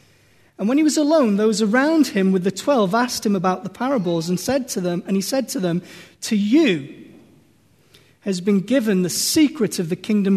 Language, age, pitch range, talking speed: English, 30-49, 180-230 Hz, 205 wpm